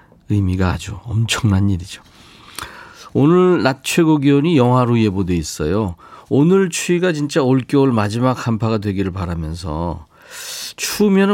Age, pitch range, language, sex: 40-59, 100-155 Hz, Korean, male